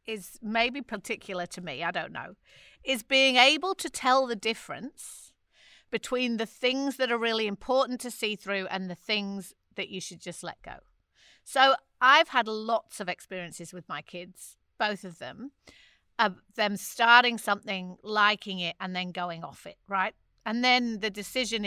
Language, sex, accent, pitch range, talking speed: English, female, British, 190-240 Hz, 170 wpm